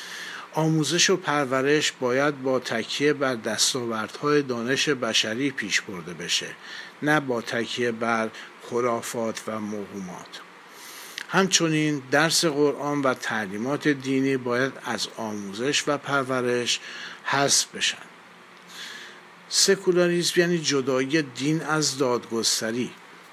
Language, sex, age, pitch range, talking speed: Persian, male, 50-69, 115-145 Hz, 105 wpm